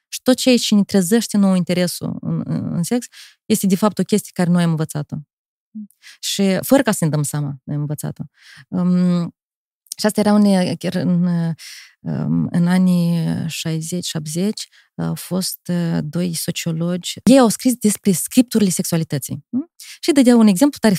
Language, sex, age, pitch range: Romanian, female, 20-39, 175-230 Hz